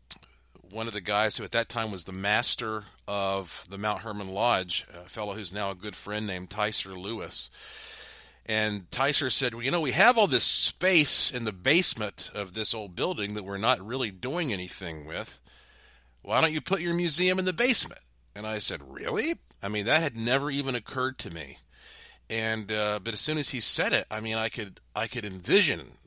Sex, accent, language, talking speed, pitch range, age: male, American, English, 205 wpm, 95-125 Hz, 40-59